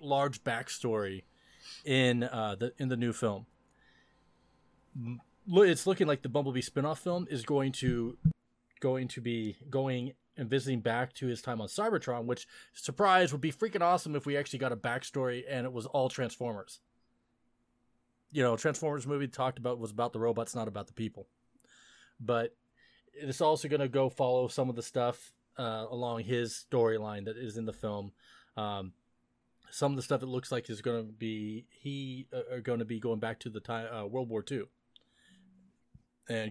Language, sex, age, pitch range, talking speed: English, male, 20-39, 115-140 Hz, 180 wpm